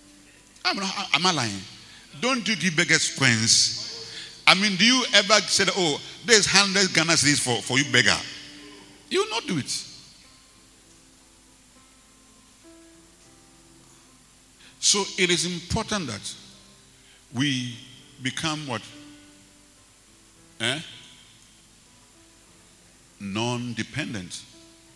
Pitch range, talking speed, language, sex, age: 100-160 Hz, 90 wpm, English, male, 60-79